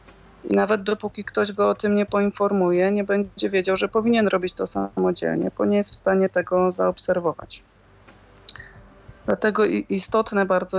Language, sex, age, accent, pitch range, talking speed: Polish, female, 30-49, native, 160-190 Hz, 150 wpm